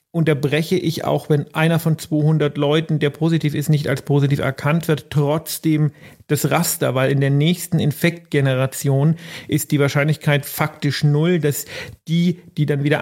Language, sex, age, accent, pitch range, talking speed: German, male, 40-59, German, 145-160 Hz, 155 wpm